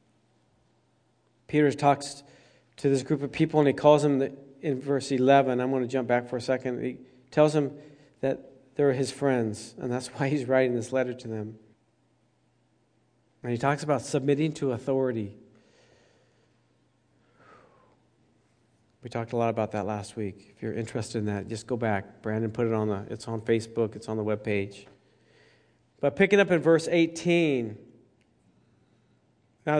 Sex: male